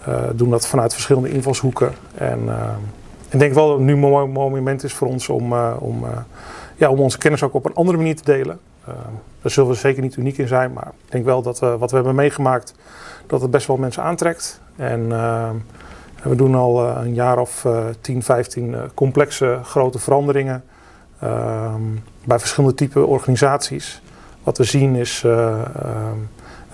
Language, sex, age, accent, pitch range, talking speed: Dutch, male, 40-59, Dutch, 120-140 Hz, 180 wpm